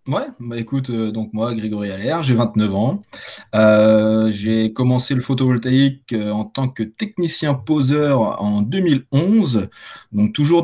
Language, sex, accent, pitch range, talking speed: French, male, French, 105-125 Hz, 135 wpm